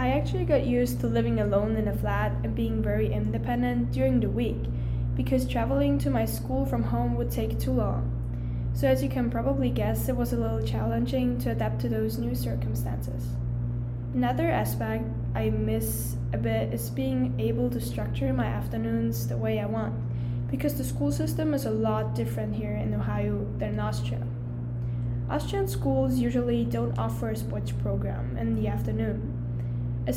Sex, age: female, 10-29